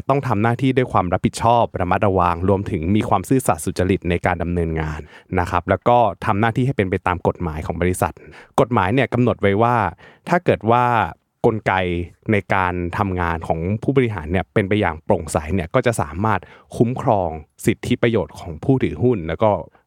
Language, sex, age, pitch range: Thai, male, 20-39, 90-120 Hz